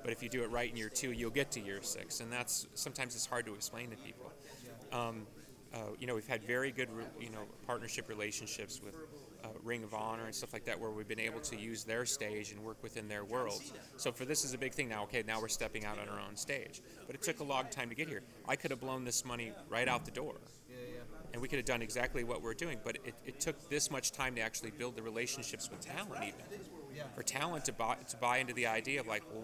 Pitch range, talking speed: 110-130 Hz, 265 wpm